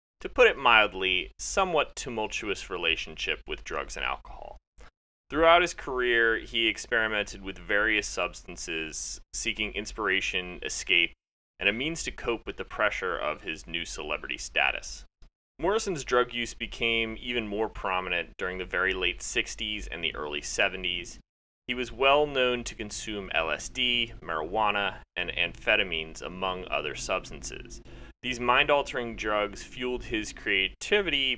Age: 30-49